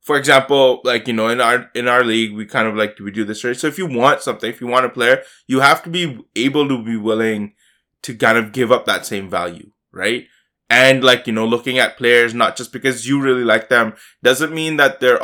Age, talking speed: 20-39, 250 wpm